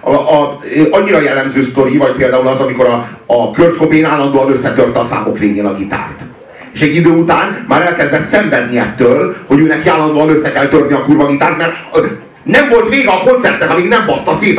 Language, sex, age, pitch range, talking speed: Hungarian, male, 40-59, 140-190 Hz, 195 wpm